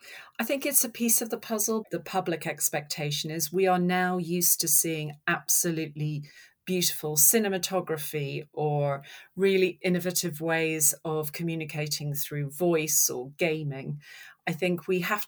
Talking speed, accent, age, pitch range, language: 135 wpm, British, 40-59, 150-180 Hz, English